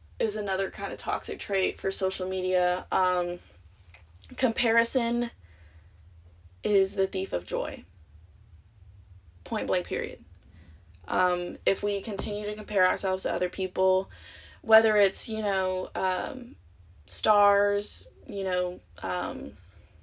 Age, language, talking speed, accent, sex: 20-39, English, 115 wpm, American, female